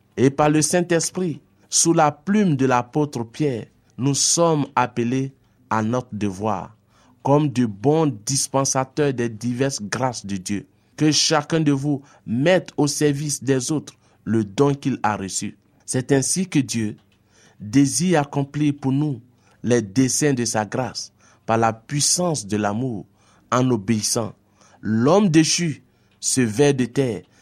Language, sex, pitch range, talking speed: French, male, 110-145 Hz, 140 wpm